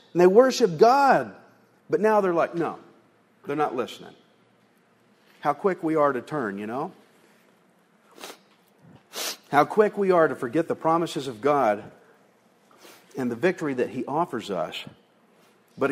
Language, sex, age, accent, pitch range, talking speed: English, male, 50-69, American, 135-220 Hz, 145 wpm